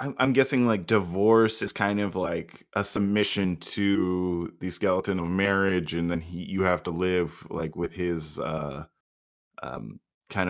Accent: American